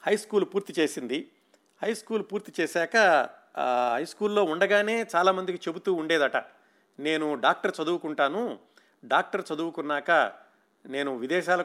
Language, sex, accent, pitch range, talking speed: Telugu, male, native, 135-170 Hz, 110 wpm